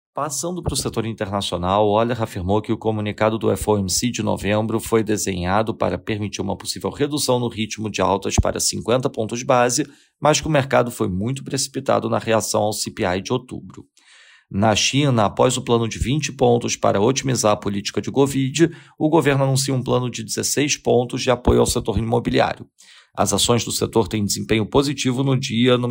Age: 40-59